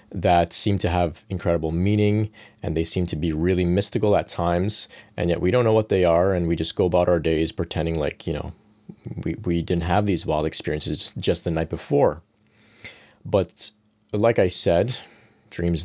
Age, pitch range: 30-49, 85-105 Hz